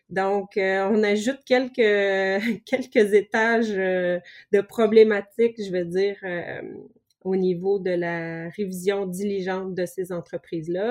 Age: 30-49